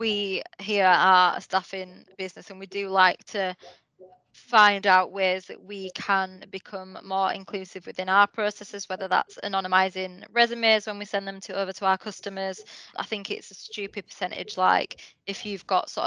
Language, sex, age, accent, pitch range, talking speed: English, female, 20-39, British, 185-205 Hz, 175 wpm